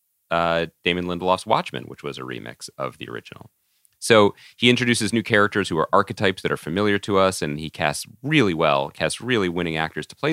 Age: 30-49